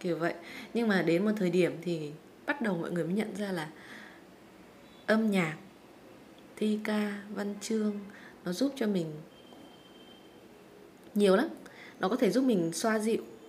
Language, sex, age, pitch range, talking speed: Vietnamese, female, 20-39, 170-220 Hz, 160 wpm